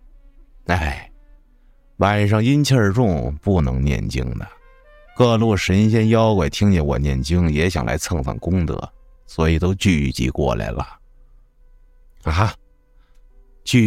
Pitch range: 75-115 Hz